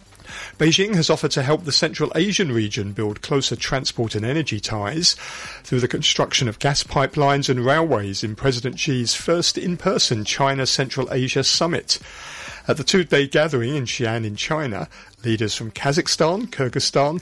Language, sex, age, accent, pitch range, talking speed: English, male, 50-69, British, 115-150 Hz, 150 wpm